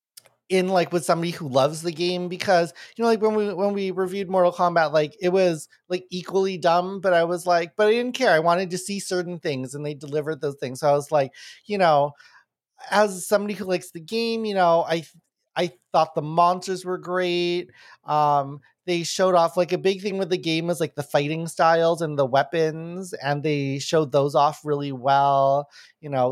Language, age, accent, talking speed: English, 30-49, American, 210 wpm